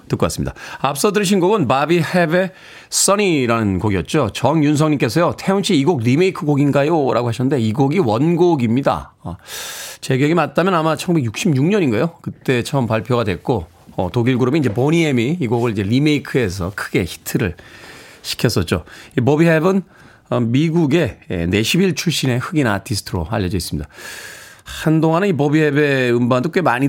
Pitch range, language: 105-160 Hz, Korean